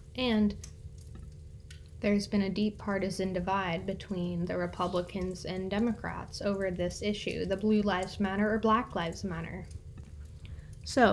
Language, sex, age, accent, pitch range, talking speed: English, female, 10-29, American, 180-210 Hz, 130 wpm